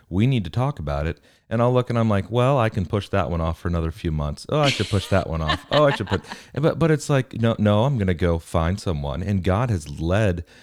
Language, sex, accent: English, male, American